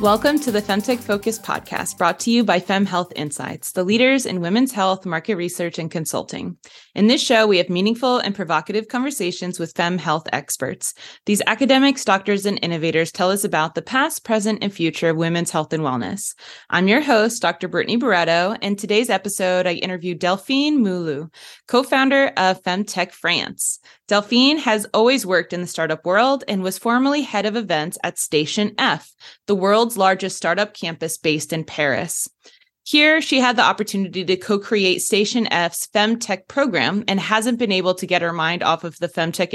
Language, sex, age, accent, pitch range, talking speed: English, female, 20-39, American, 175-225 Hz, 180 wpm